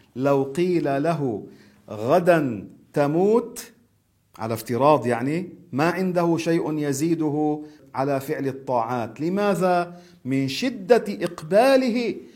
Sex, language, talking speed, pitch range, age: male, Arabic, 90 wpm, 130-175 Hz, 40-59